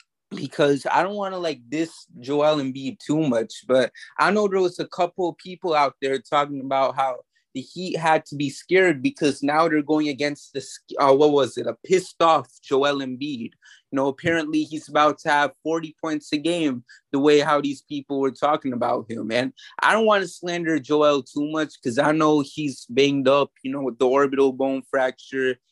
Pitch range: 135-155 Hz